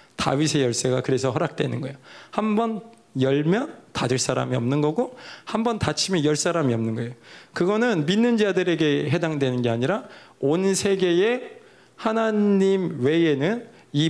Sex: male